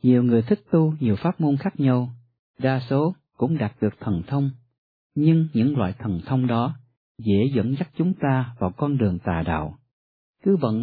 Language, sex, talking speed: Vietnamese, male, 190 wpm